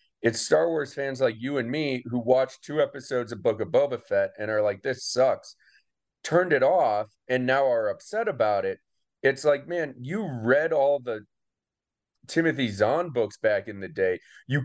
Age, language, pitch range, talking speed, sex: 30-49, English, 110-145 Hz, 190 wpm, male